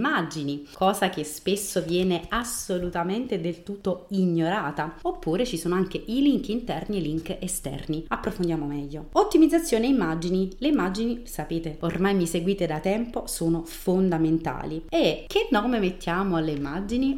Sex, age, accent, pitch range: female, 30-49, native, 165-200 Hz